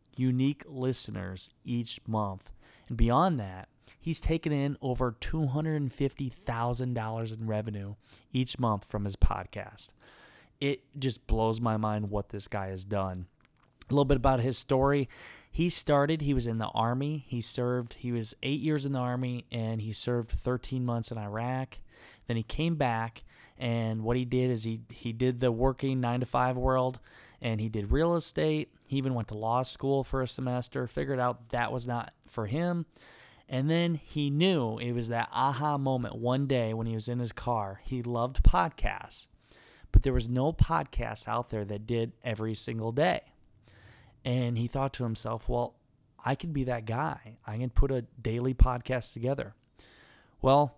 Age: 20-39